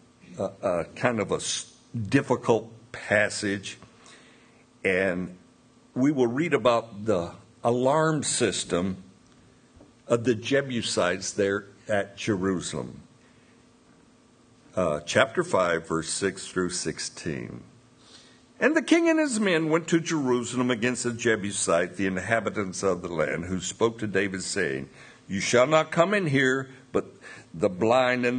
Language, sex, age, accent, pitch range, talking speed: English, male, 60-79, American, 100-155 Hz, 125 wpm